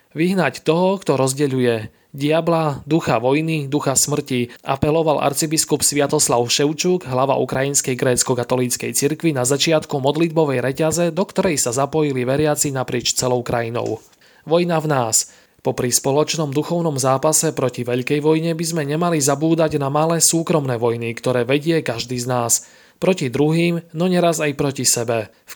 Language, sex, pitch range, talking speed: Slovak, male, 130-160 Hz, 145 wpm